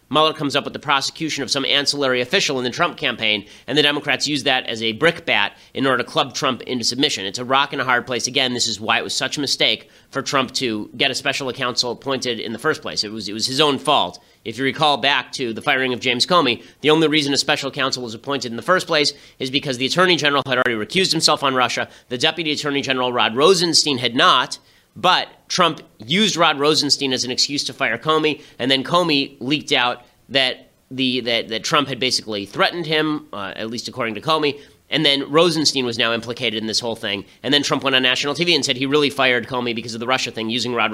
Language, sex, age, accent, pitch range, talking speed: English, male, 30-49, American, 120-150 Hz, 240 wpm